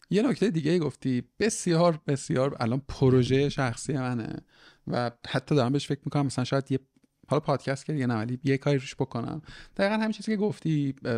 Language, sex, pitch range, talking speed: Persian, male, 105-145 Hz, 175 wpm